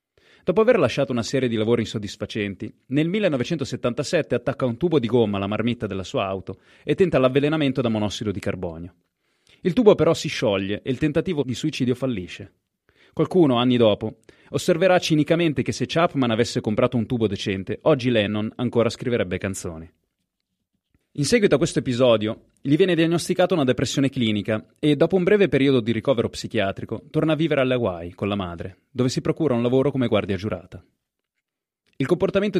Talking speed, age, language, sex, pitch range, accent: 170 wpm, 30-49, Italian, male, 110-150 Hz, native